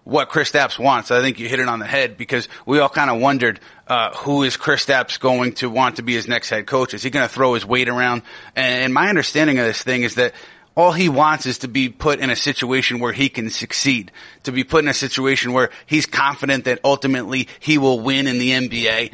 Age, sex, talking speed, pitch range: 30-49, male, 250 wpm, 125-140 Hz